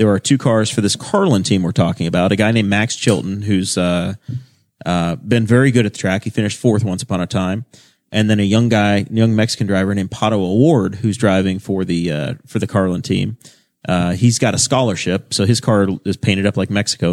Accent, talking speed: American, 230 wpm